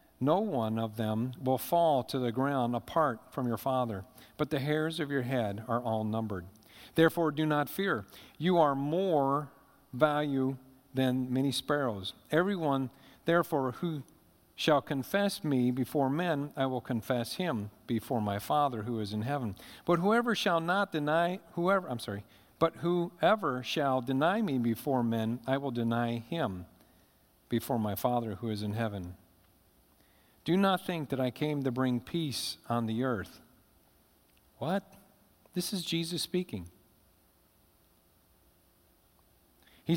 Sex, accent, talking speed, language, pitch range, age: male, American, 145 wpm, English, 110-155 Hz, 50-69